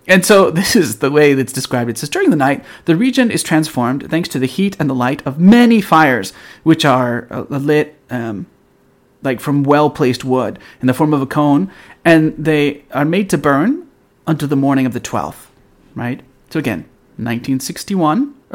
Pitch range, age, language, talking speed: 125-165 Hz, 30-49, English, 190 wpm